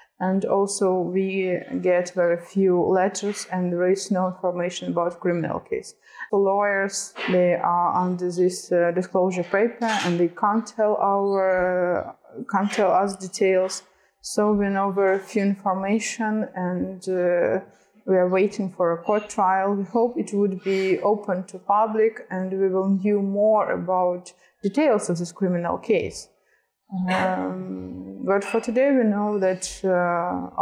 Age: 20-39